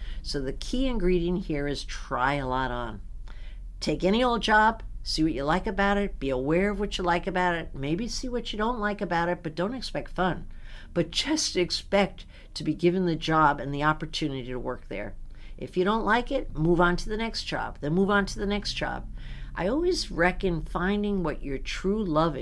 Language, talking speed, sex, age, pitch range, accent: English, 215 wpm, female, 60-79, 150-200 Hz, American